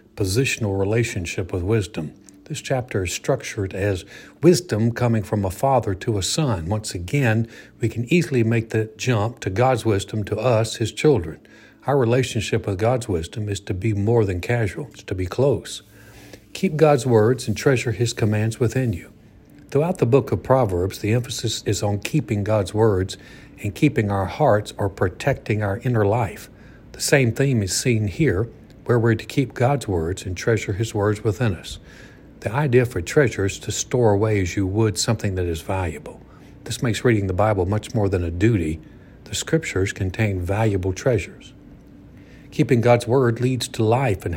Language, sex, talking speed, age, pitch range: English, male, 180 wpm, 60-79, 100-125 Hz